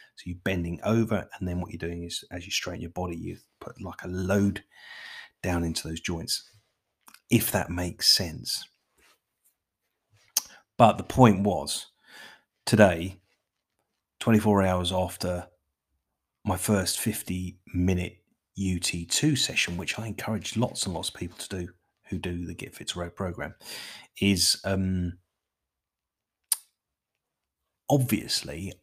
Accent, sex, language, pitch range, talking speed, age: British, male, English, 85-115 Hz, 130 wpm, 30-49